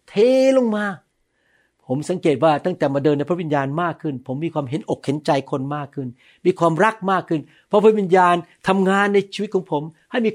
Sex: male